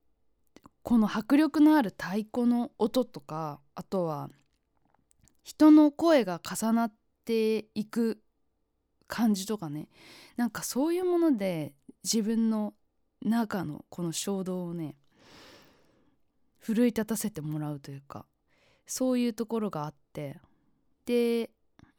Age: 20-39